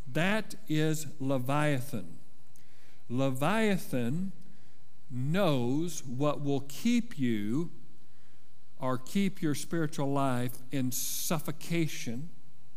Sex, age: male, 50-69